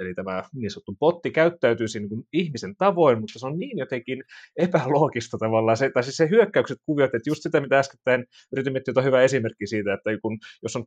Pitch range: 115-145 Hz